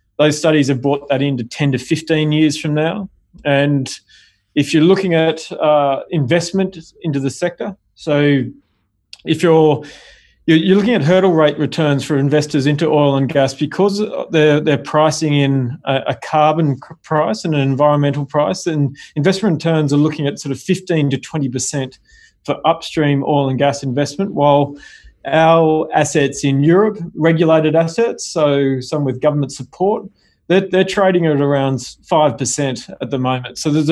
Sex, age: male, 30-49